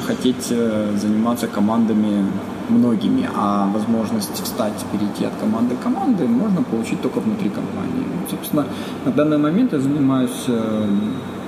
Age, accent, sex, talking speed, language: 20-39, native, male, 120 wpm, Ukrainian